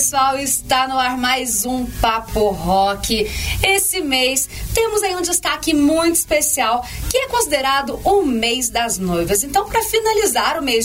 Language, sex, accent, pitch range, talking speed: Portuguese, female, Brazilian, 245-330 Hz, 155 wpm